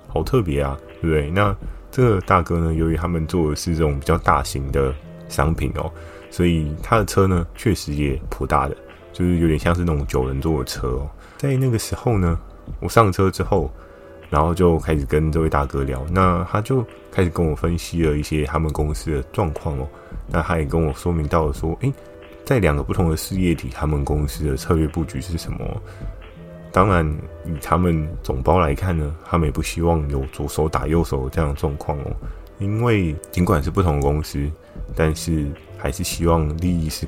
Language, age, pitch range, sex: Chinese, 20-39, 75-90 Hz, male